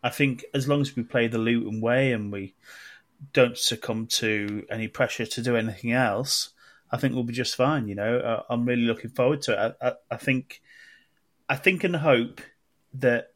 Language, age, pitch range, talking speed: English, 30-49, 110-130 Hz, 200 wpm